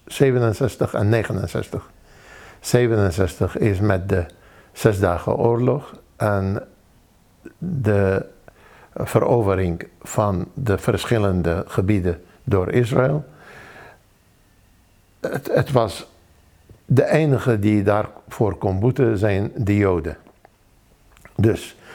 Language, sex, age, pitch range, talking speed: Dutch, male, 60-79, 95-115 Hz, 85 wpm